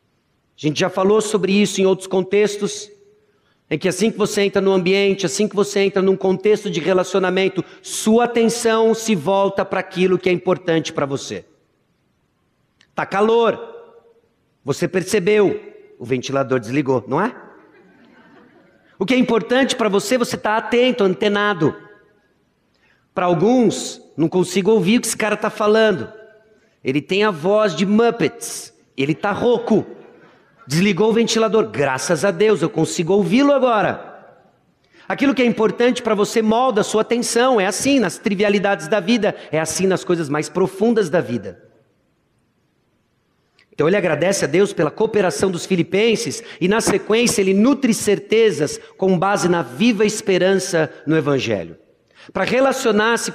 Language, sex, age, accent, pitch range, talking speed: Portuguese, male, 50-69, Brazilian, 180-220 Hz, 150 wpm